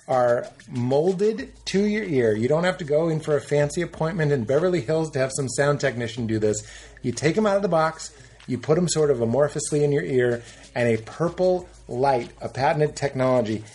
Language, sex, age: English, male, 30-49